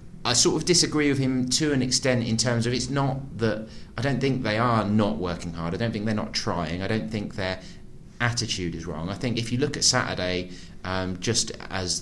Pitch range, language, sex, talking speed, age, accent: 100-125 Hz, English, male, 230 wpm, 30-49, British